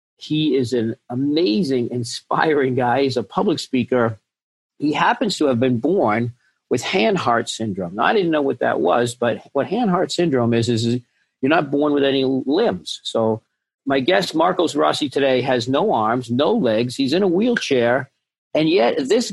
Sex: male